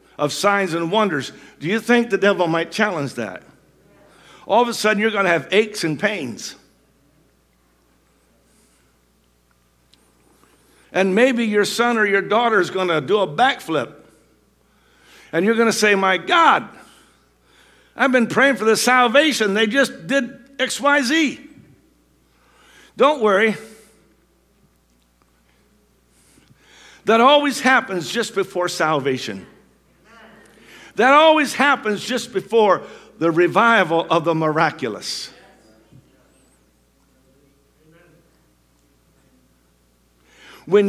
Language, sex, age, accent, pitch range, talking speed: English, male, 60-79, American, 150-235 Hz, 100 wpm